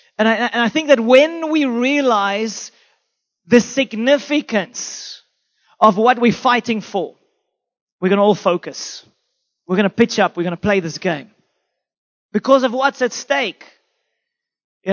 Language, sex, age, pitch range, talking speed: English, male, 30-49, 205-260 Hz, 155 wpm